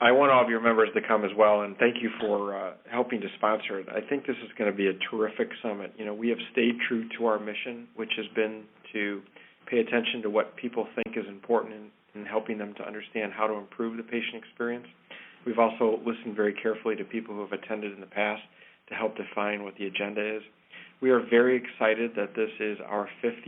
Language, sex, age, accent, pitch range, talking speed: English, male, 40-59, American, 105-115 Hz, 230 wpm